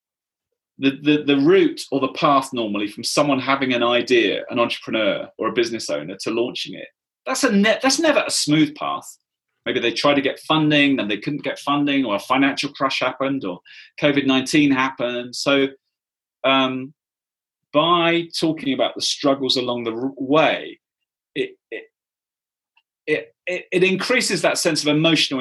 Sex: male